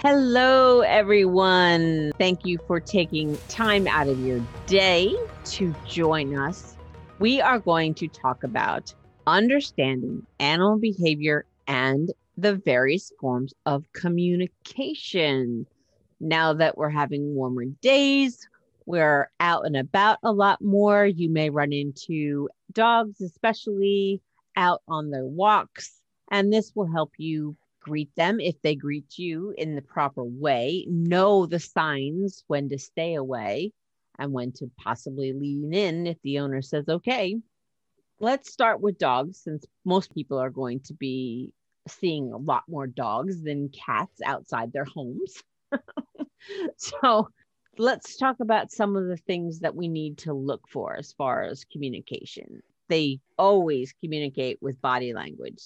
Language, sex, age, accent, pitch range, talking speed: English, female, 40-59, American, 140-200 Hz, 140 wpm